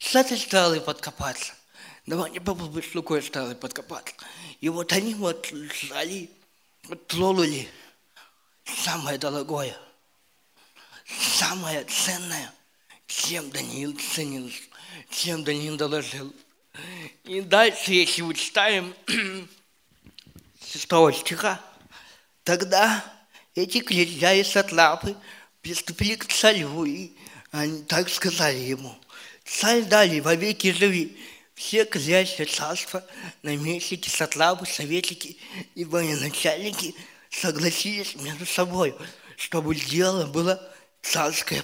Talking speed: 95 wpm